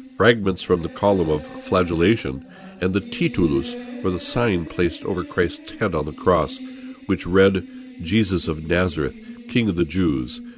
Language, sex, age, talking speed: English, male, 60-79, 160 wpm